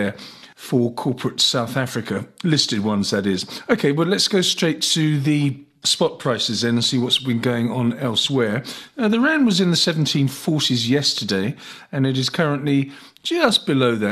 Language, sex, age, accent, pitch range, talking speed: English, male, 40-59, British, 125-165 Hz, 170 wpm